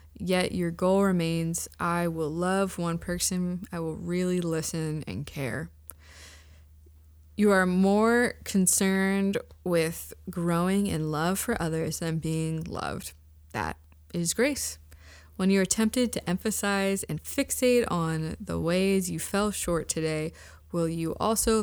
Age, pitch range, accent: 20-39, 130-195 Hz, American